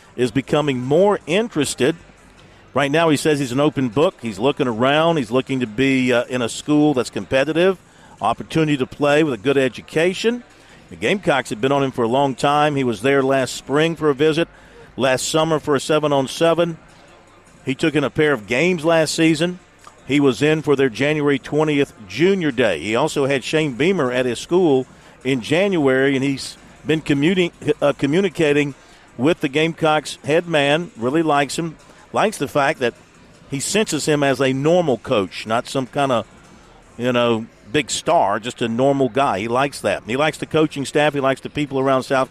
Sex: male